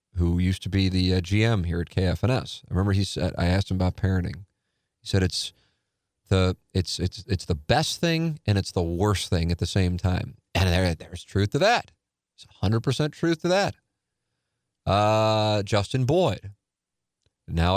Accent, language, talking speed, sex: American, English, 180 wpm, male